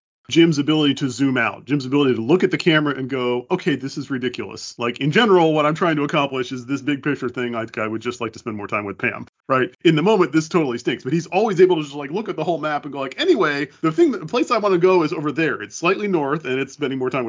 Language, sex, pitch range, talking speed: English, male, 130-170 Hz, 290 wpm